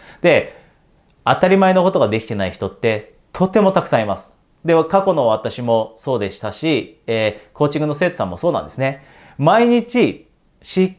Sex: male